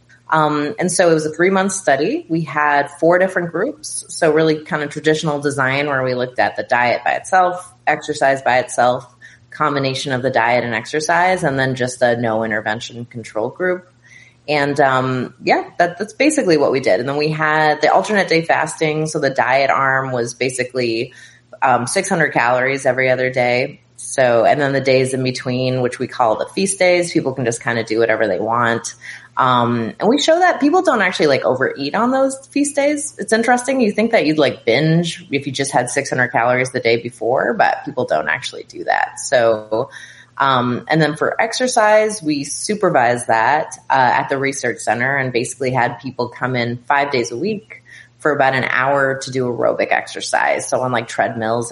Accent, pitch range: American, 120-165 Hz